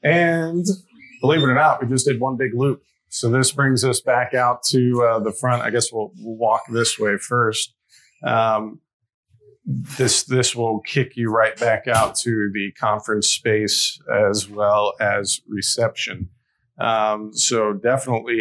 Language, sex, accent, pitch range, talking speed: English, male, American, 110-125 Hz, 160 wpm